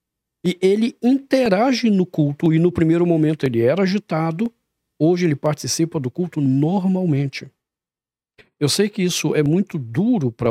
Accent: Brazilian